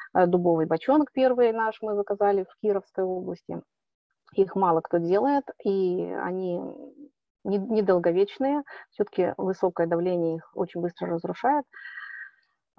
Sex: female